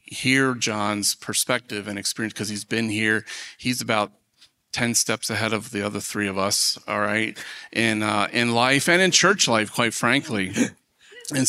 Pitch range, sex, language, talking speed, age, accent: 105-130 Hz, male, English, 170 wpm, 30-49, American